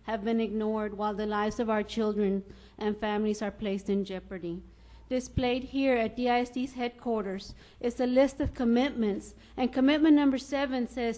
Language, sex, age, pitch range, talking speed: English, female, 40-59, 220-270 Hz, 160 wpm